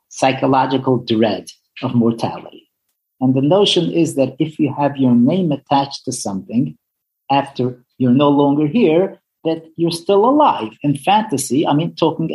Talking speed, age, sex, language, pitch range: 150 wpm, 50-69, male, English, 125-175 Hz